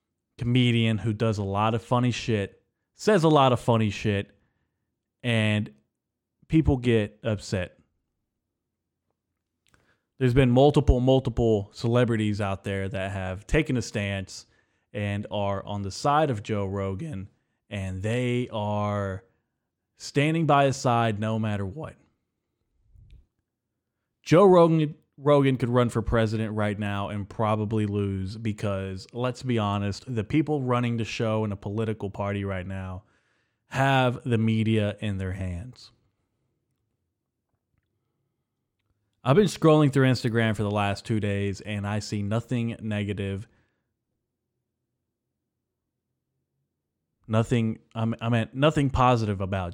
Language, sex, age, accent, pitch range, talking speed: English, male, 30-49, American, 100-120 Hz, 125 wpm